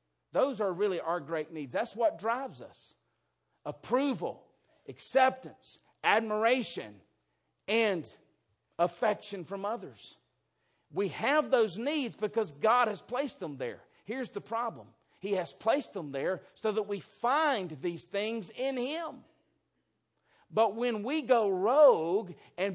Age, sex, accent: 50-69, male, American